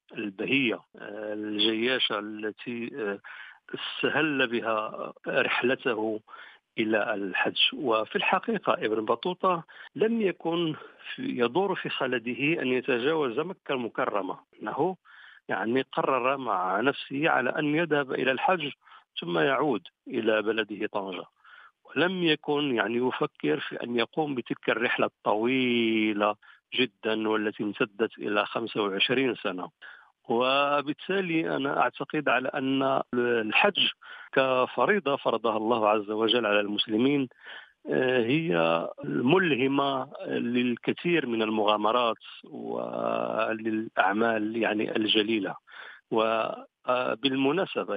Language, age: Arabic, 50-69